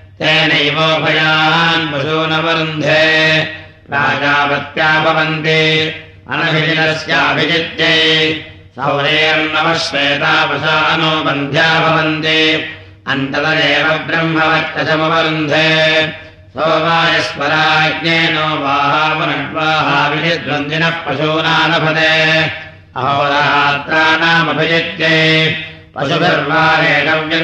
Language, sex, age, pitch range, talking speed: Russian, male, 60-79, 150-160 Hz, 50 wpm